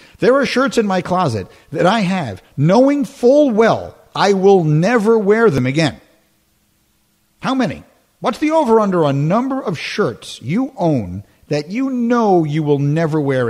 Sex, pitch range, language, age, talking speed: male, 130-220 Hz, English, 50-69, 165 wpm